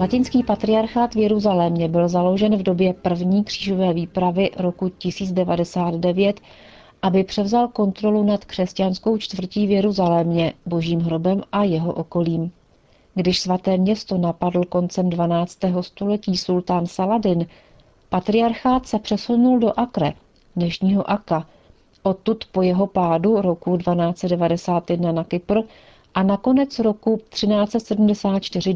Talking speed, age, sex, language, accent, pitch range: 115 wpm, 40-59, female, Czech, native, 175-205 Hz